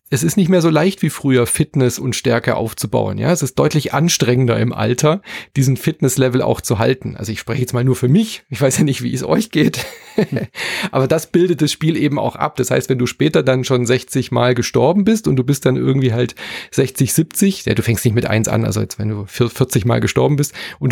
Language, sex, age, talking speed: German, male, 30-49, 240 wpm